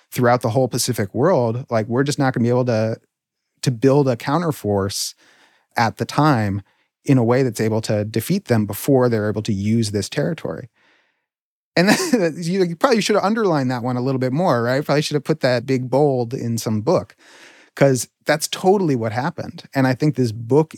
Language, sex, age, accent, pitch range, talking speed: English, male, 30-49, American, 110-140 Hz, 200 wpm